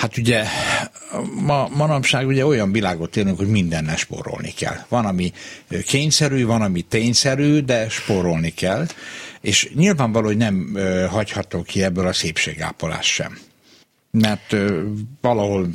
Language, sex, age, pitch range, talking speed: Hungarian, male, 60-79, 85-115 Hz, 125 wpm